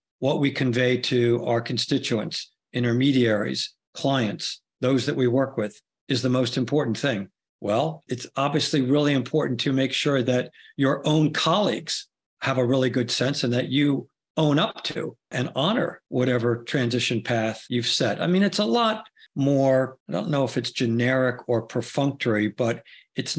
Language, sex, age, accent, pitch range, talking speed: English, male, 50-69, American, 120-145 Hz, 165 wpm